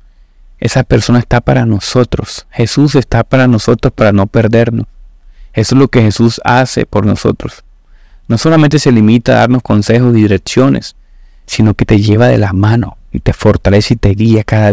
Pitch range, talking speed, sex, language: 90-120 Hz, 175 wpm, male, Spanish